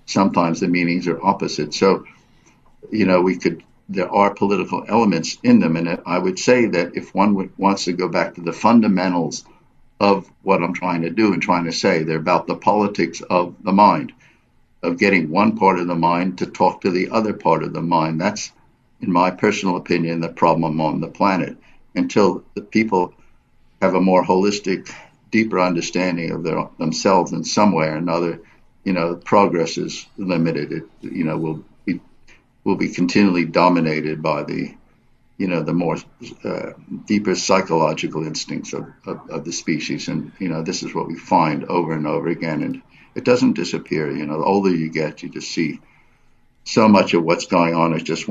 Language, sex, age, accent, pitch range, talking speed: English, male, 60-79, American, 80-95 Hz, 185 wpm